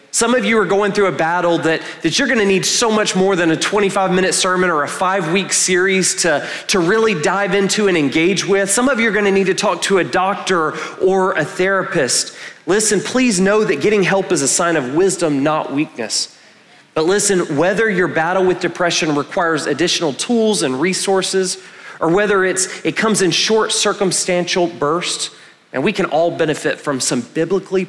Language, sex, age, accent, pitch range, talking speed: English, male, 30-49, American, 155-195 Hz, 195 wpm